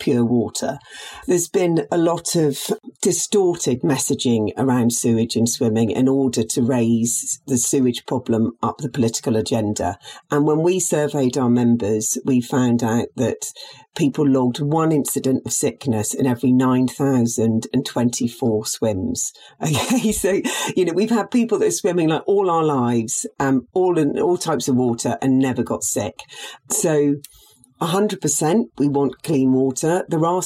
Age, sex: 40-59, female